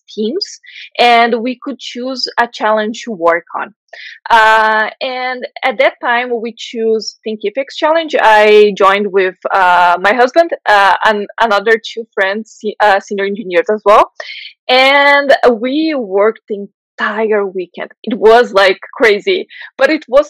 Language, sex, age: English, female, 20-39